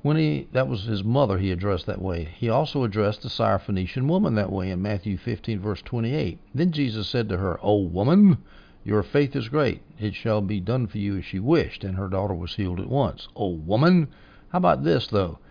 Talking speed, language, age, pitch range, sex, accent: 215 wpm, English, 60-79, 100-135 Hz, male, American